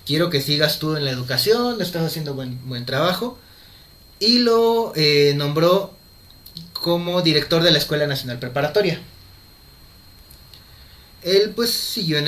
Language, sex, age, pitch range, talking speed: Spanish, male, 30-49, 130-205 Hz, 130 wpm